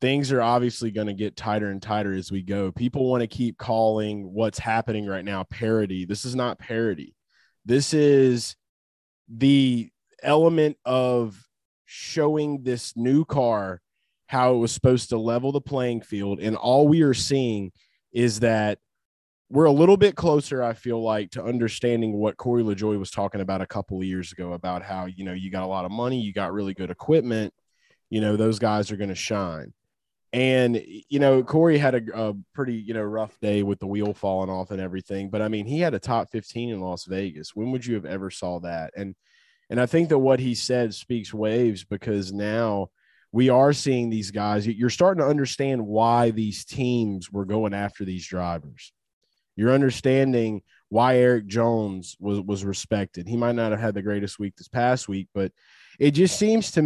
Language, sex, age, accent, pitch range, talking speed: English, male, 20-39, American, 100-125 Hz, 195 wpm